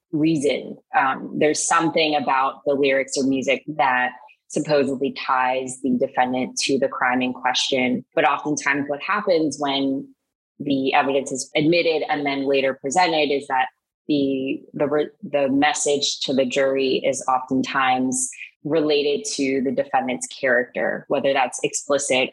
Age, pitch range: 20-39, 135-155 Hz